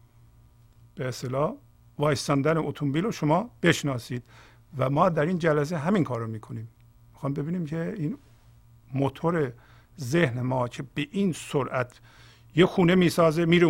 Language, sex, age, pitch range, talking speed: Persian, male, 50-69, 120-150 Hz, 130 wpm